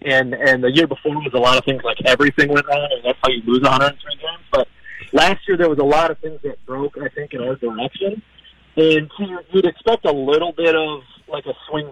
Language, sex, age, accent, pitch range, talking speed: English, male, 40-59, American, 135-160 Hz, 250 wpm